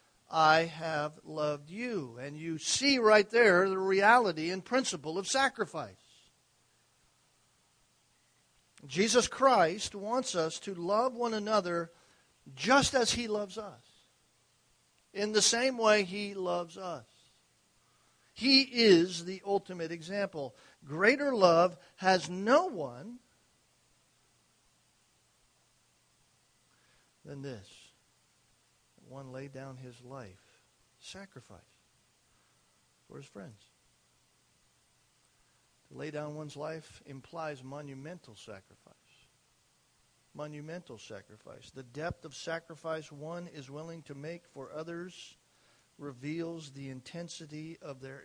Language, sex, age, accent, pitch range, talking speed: English, male, 50-69, American, 140-195 Hz, 100 wpm